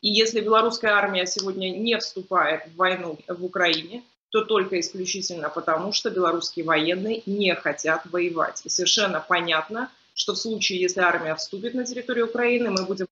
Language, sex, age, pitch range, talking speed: Russian, female, 20-39, 180-220 Hz, 160 wpm